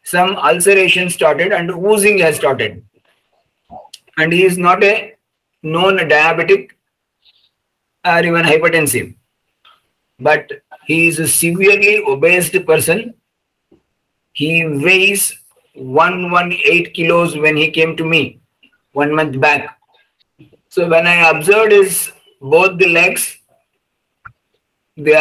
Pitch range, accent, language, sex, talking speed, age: 160-195 Hz, Indian, English, male, 105 wpm, 50-69